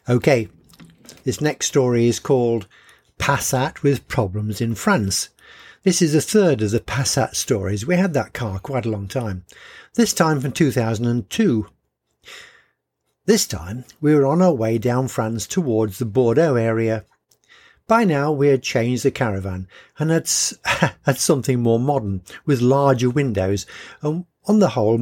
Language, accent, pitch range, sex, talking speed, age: English, British, 115-160 Hz, male, 155 wpm, 60-79